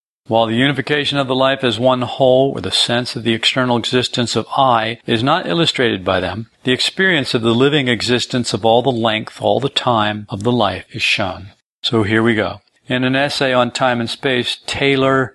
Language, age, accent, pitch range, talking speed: English, 50-69, American, 115-135 Hz, 205 wpm